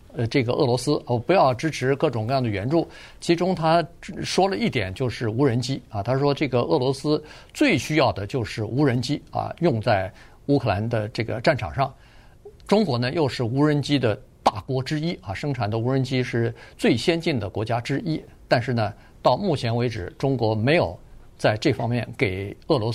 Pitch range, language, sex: 120-160 Hz, Chinese, male